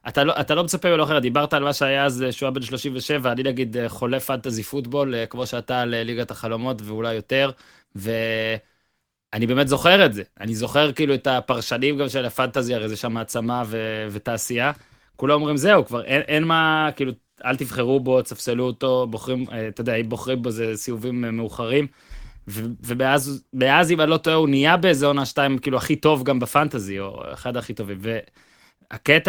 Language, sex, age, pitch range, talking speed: Hebrew, male, 20-39, 120-145 Hz, 170 wpm